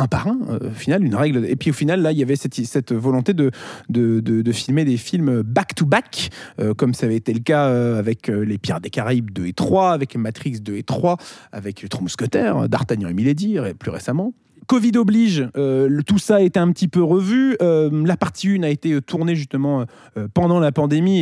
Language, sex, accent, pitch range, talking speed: French, male, French, 125-175 Hz, 225 wpm